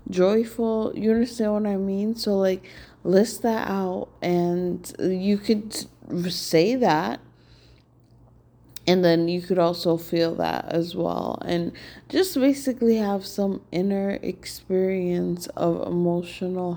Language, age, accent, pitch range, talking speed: English, 20-39, American, 175-200 Hz, 120 wpm